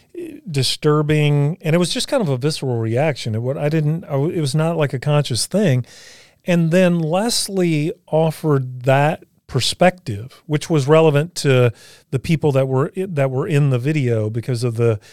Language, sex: English, male